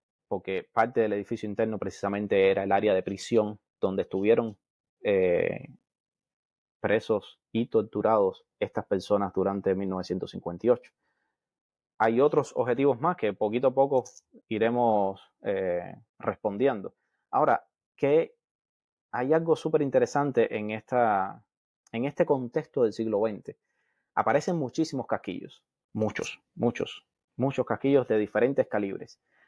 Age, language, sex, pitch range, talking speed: 20-39, Spanish, male, 110-150 Hz, 110 wpm